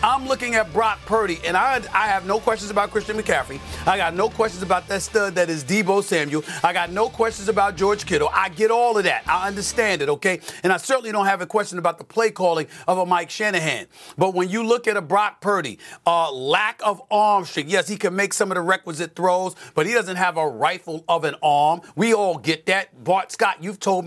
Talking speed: 240 wpm